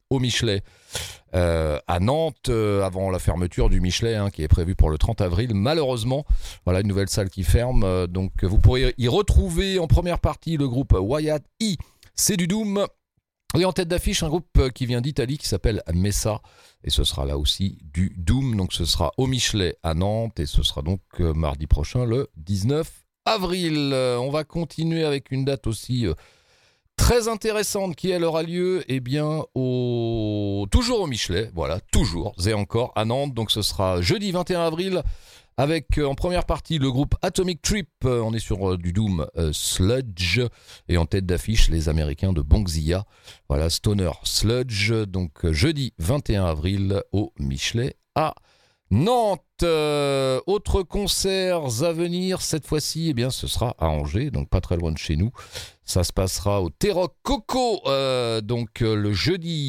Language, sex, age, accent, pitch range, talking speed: French, male, 40-59, French, 95-150 Hz, 180 wpm